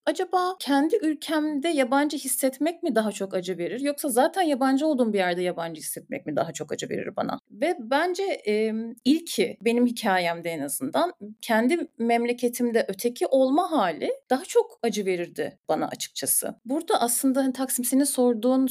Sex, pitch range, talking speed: female, 235-310 Hz, 150 wpm